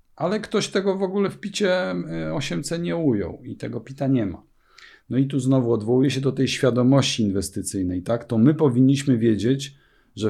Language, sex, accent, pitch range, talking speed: Polish, male, native, 105-125 Hz, 185 wpm